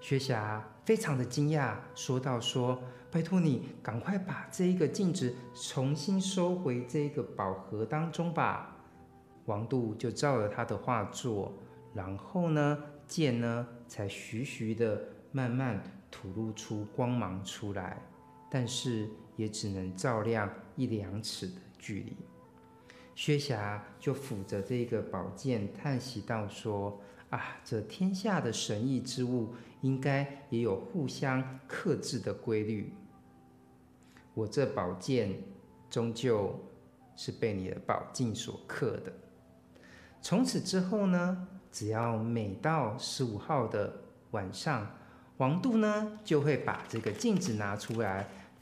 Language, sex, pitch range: Chinese, male, 105-140 Hz